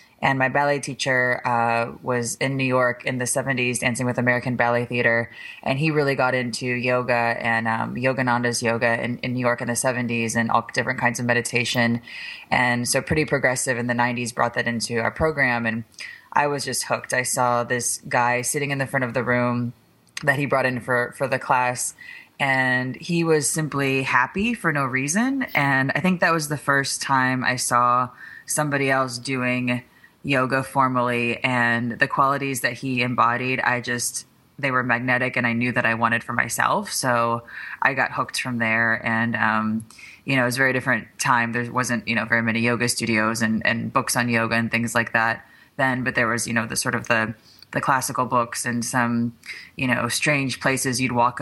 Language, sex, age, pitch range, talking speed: English, female, 20-39, 120-135 Hz, 200 wpm